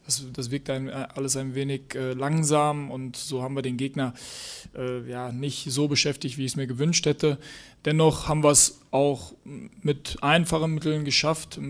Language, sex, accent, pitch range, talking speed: German, male, German, 130-150 Hz, 185 wpm